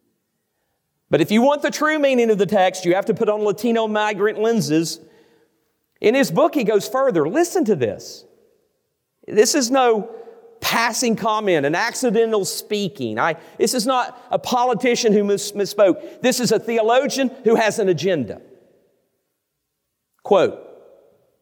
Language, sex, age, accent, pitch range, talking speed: English, male, 40-59, American, 190-280 Hz, 145 wpm